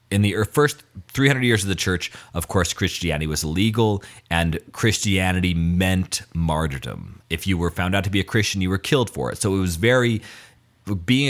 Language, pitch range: English, 85-110 Hz